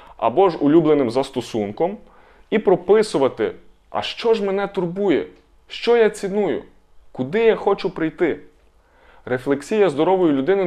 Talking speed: 120 wpm